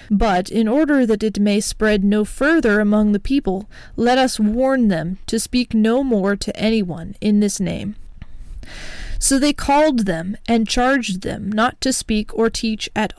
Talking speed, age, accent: 175 wpm, 20-39, American